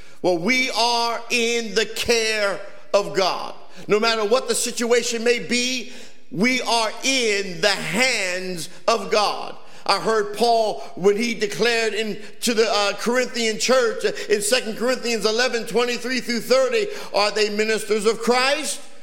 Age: 50-69